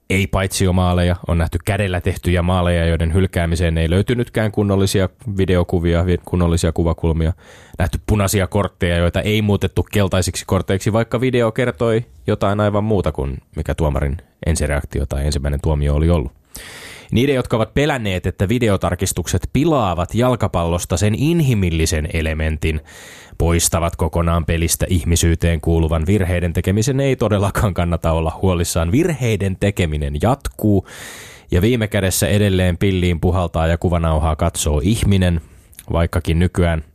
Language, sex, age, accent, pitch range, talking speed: Finnish, male, 20-39, native, 85-100 Hz, 125 wpm